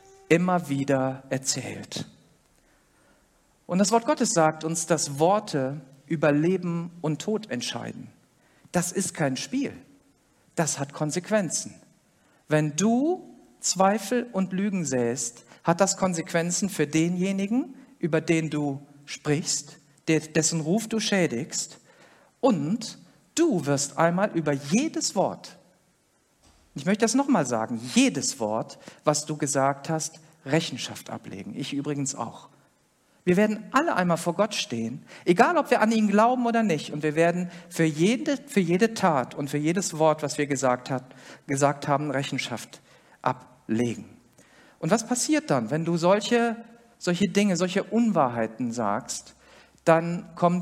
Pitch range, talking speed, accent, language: 145-205 Hz, 135 wpm, German, German